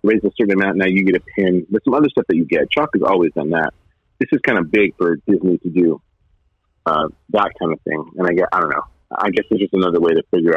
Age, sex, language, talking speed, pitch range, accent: 40-59, male, English, 280 wpm, 90-110 Hz, American